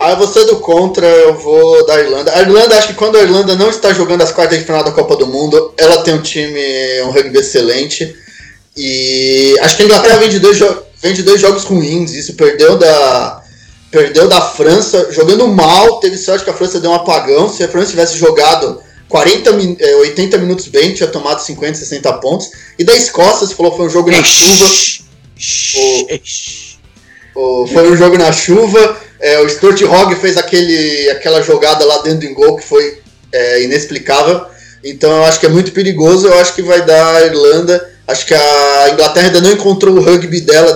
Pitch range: 155-220 Hz